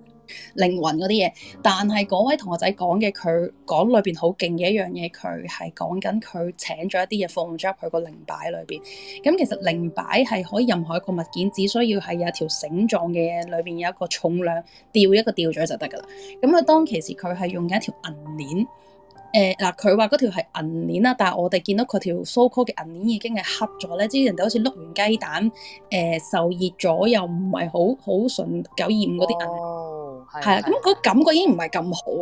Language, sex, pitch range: Chinese, female, 175-230 Hz